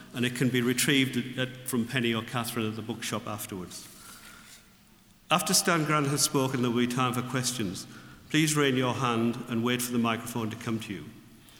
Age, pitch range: 50-69, 110-130 Hz